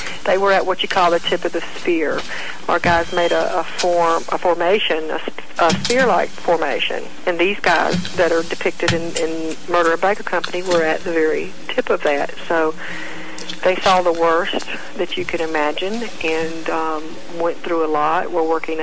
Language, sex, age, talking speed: English, female, 50-69, 190 wpm